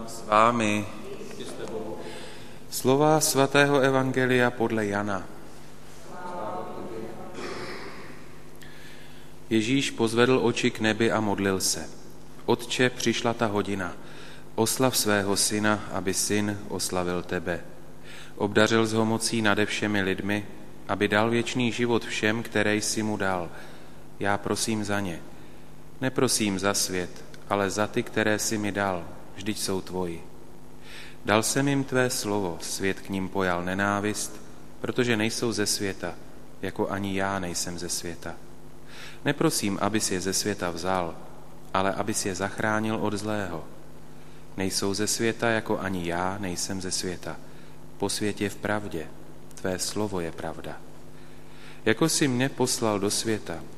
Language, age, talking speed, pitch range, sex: Slovak, 30-49, 125 wpm, 85-110 Hz, male